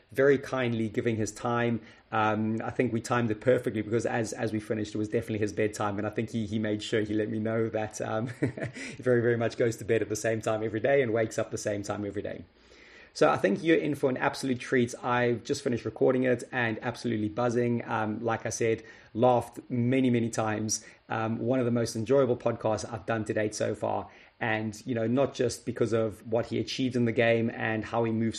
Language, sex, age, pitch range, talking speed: English, male, 30-49, 110-120 Hz, 235 wpm